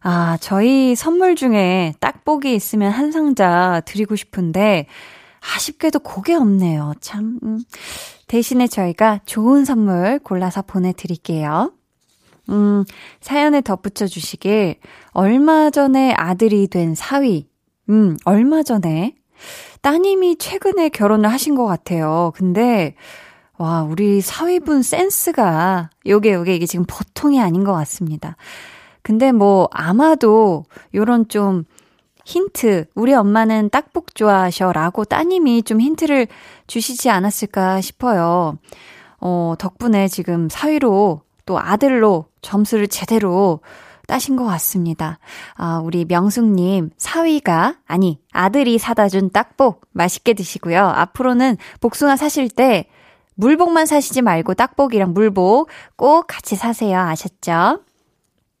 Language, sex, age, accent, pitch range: Korean, female, 20-39, native, 185-260 Hz